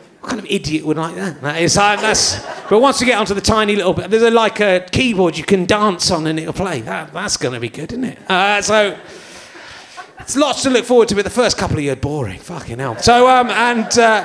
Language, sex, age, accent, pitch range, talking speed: English, male, 30-49, British, 175-230 Hz, 245 wpm